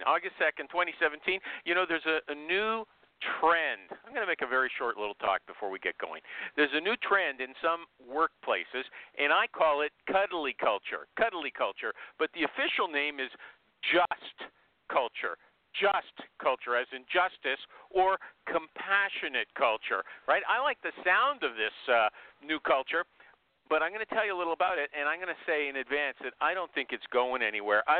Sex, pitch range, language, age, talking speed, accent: male, 150-205 Hz, English, 50-69, 190 wpm, American